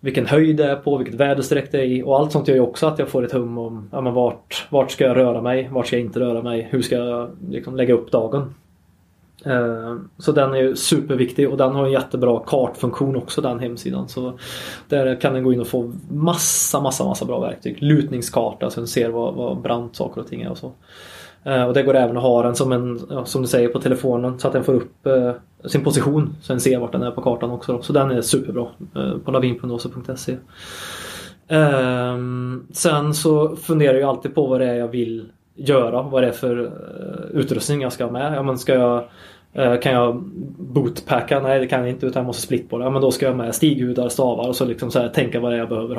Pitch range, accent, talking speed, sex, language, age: 120-140 Hz, native, 235 wpm, male, Swedish, 20-39